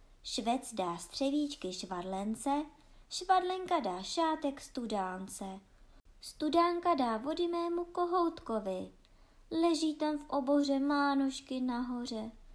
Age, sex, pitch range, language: 20-39, male, 205-325 Hz, Czech